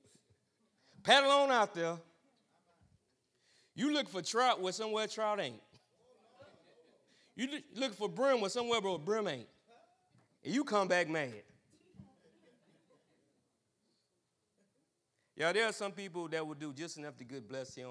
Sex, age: male, 30-49